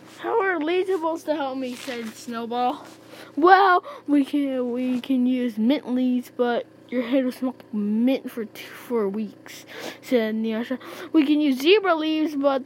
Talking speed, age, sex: 165 wpm, 10-29, female